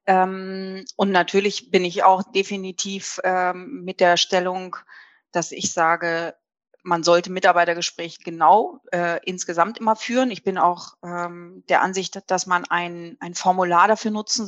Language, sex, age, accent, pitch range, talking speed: German, female, 30-49, German, 180-205 Hz, 145 wpm